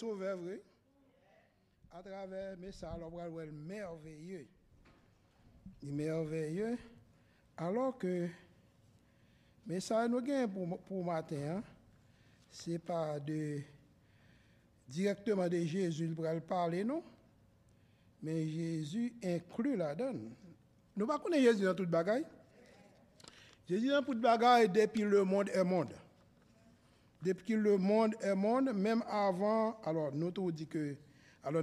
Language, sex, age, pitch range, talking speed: English, male, 60-79, 160-215 Hz, 125 wpm